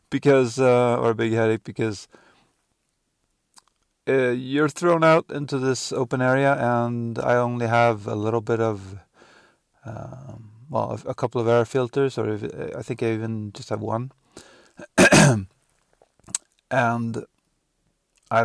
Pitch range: 115-135 Hz